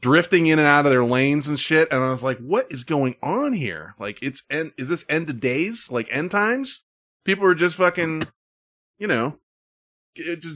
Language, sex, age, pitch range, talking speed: English, male, 20-39, 115-175 Hz, 205 wpm